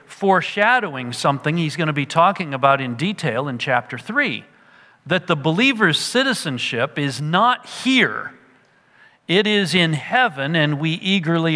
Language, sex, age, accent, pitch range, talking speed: English, male, 50-69, American, 140-205 Hz, 140 wpm